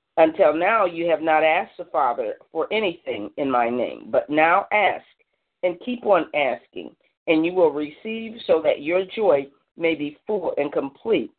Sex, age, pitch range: female, 40-59, 160-235 Hz